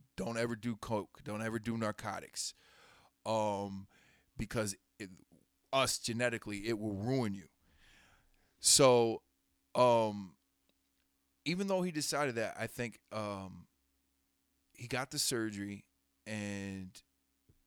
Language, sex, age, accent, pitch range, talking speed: English, male, 20-39, American, 95-120 Hz, 105 wpm